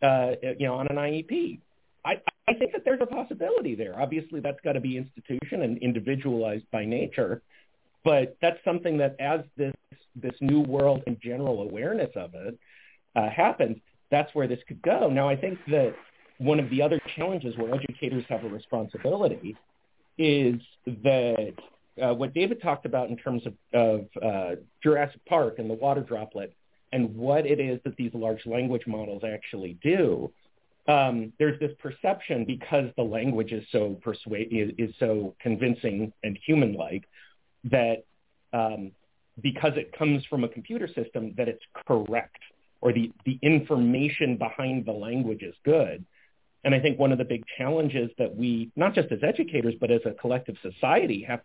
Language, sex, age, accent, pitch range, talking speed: English, male, 40-59, American, 115-150 Hz, 170 wpm